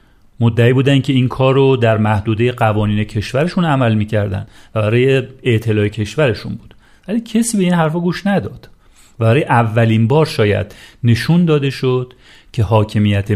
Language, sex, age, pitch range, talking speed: Persian, male, 40-59, 110-140 Hz, 145 wpm